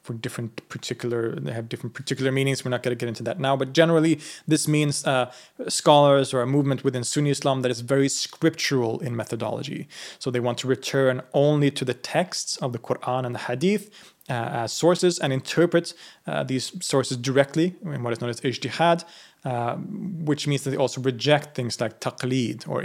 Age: 30-49